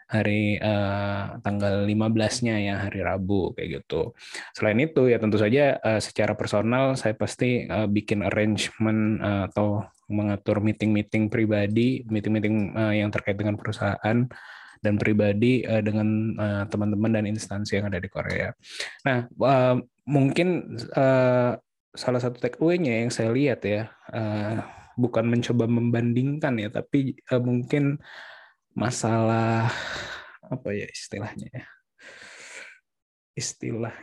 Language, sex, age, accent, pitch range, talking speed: Indonesian, male, 20-39, native, 105-130 Hz, 125 wpm